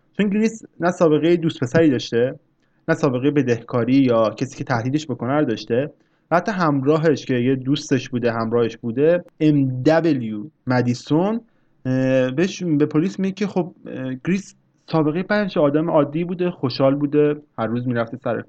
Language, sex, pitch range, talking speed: Persian, male, 120-160 Hz, 145 wpm